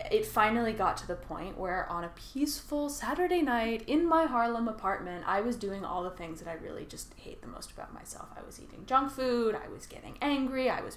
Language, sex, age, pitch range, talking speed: English, female, 10-29, 180-275 Hz, 230 wpm